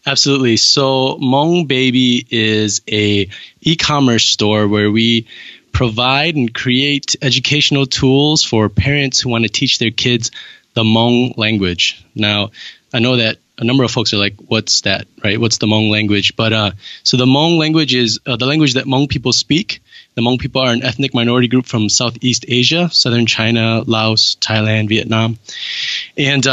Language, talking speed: English, 165 wpm